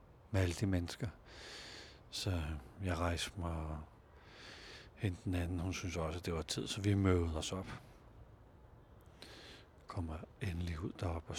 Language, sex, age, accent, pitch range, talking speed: Danish, male, 60-79, native, 85-110 Hz, 155 wpm